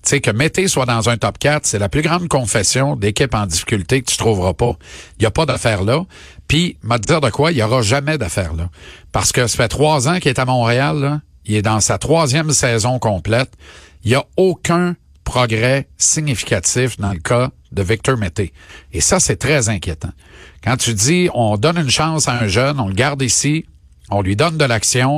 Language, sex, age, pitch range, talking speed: French, male, 50-69, 105-145 Hz, 225 wpm